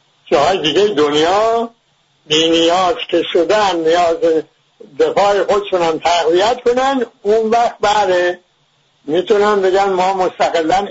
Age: 60-79